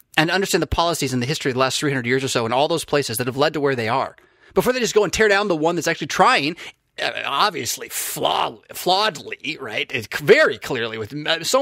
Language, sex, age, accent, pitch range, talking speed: English, male, 30-49, American, 130-200 Hz, 225 wpm